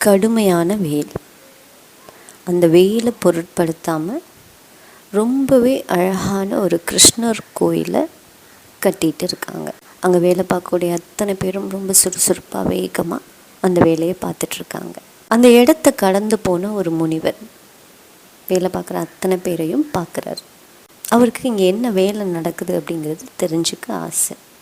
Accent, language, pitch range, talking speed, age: Indian, English, 180-230 Hz, 100 wpm, 30-49